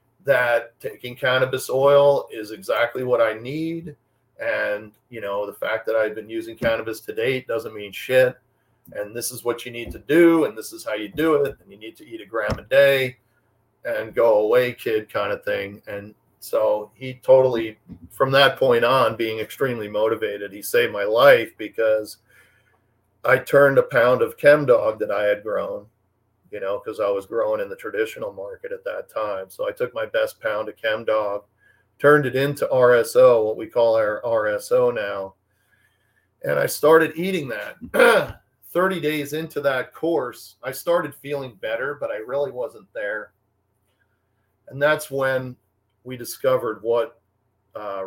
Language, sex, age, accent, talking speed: English, male, 50-69, American, 175 wpm